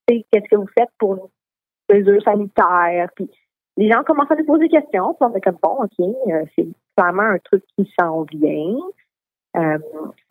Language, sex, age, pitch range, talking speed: French, female, 30-49, 180-225 Hz, 180 wpm